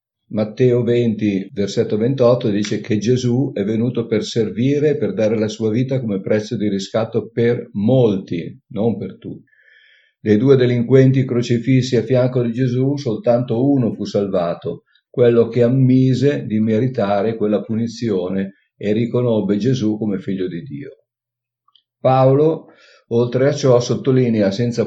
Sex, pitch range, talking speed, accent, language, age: male, 105-125 Hz, 140 wpm, native, Italian, 50-69